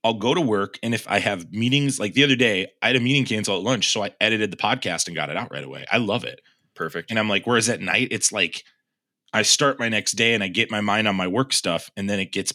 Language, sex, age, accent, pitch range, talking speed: English, male, 30-49, American, 100-130 Hz, 290 wpm